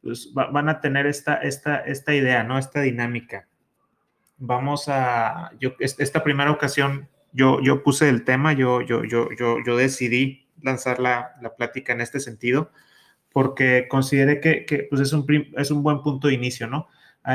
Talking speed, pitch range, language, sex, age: 175 wpm, 120-135 Hz, Spanish, male, 30-49